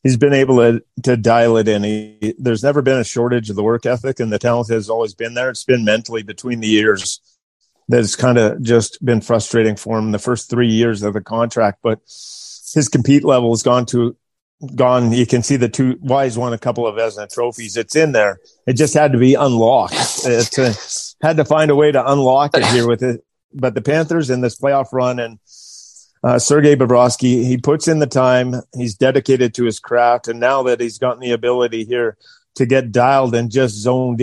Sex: male